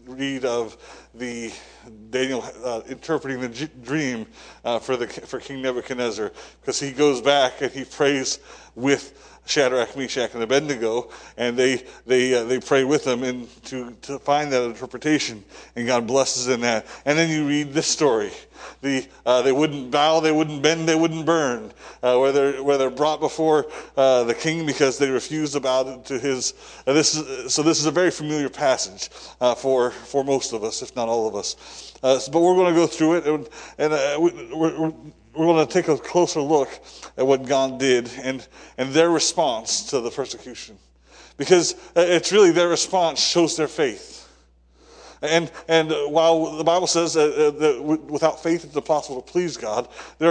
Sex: male